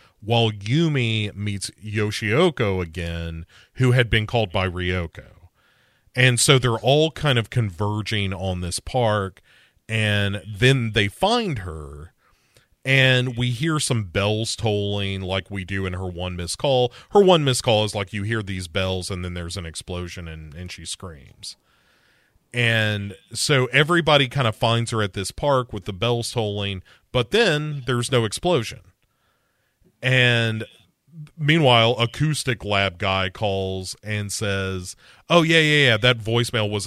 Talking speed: 150 wpm